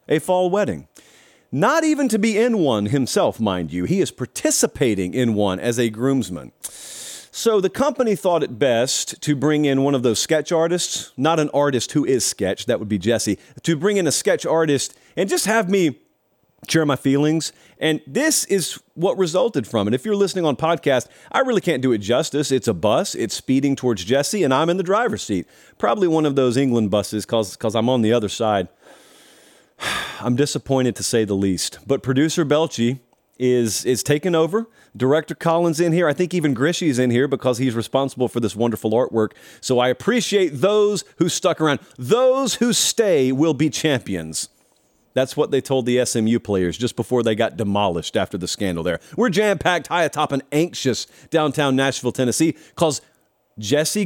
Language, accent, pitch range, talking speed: English, American, 120-175 Hz, 190 wpm